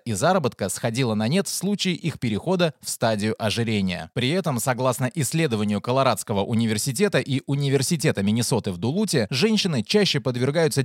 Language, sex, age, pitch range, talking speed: Russian, male, 20-39, 110-155 Hz, 145 wpm